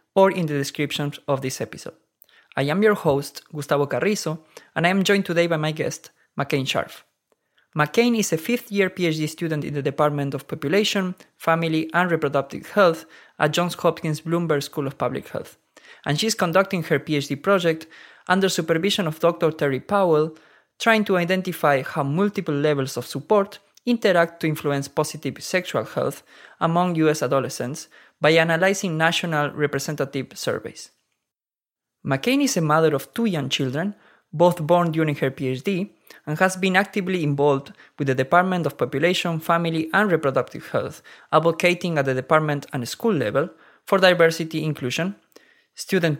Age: 20-39